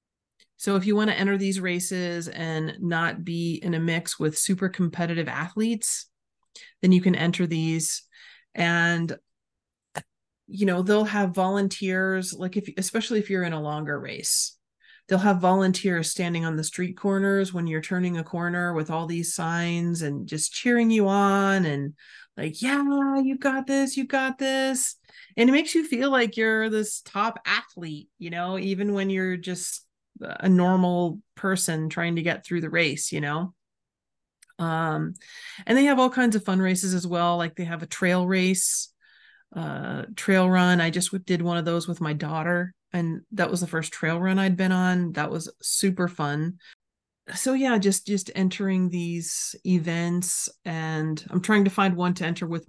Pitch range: 170-195 Hz